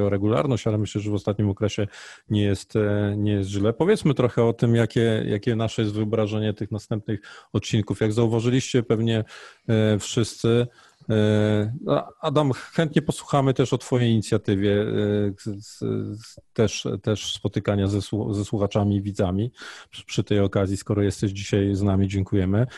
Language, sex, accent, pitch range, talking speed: Polish, male, native, 105-125 Hz, 135 wpm